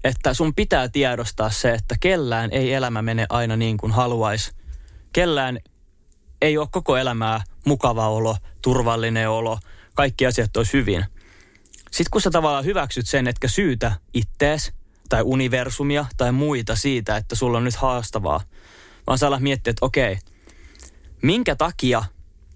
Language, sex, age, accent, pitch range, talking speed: Finnish, male, 20-39, native, 95-135 Hz, 140 wpm